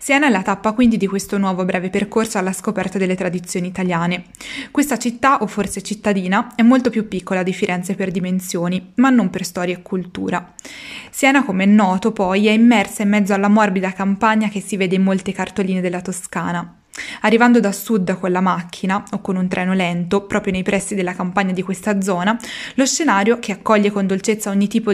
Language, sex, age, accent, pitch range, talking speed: Italian, female, 20-39, native, 190-225 Hz, 195 wpm